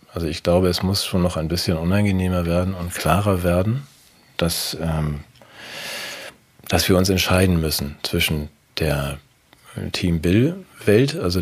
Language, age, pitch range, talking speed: German, 40-59, 80-95 Hz, 125 wpm